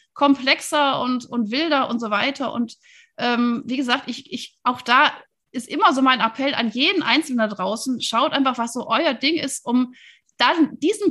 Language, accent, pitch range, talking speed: German, German, 230-290 Hz, 190 wpm